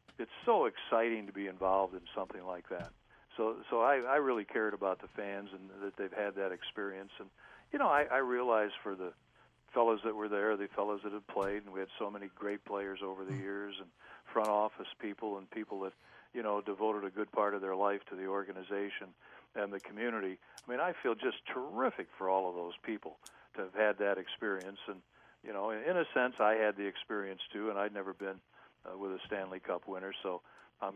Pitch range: 95-110 Hz